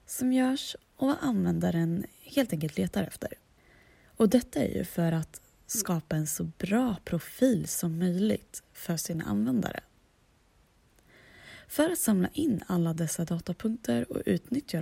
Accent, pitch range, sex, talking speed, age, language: native, 170-225 Hz, female, 140 wpm, 20-39, Swedish